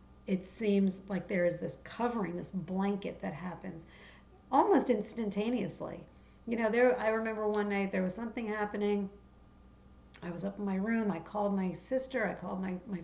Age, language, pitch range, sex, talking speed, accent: 50-69, English, 180-215 Hz, female, 175 wpm, American